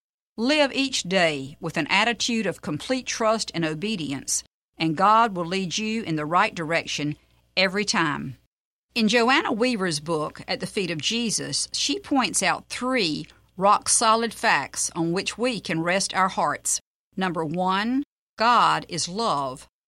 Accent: American